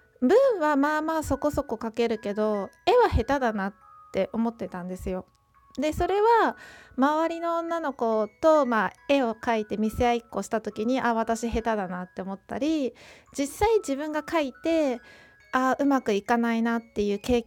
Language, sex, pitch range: Japanese, female, 220-300 Hz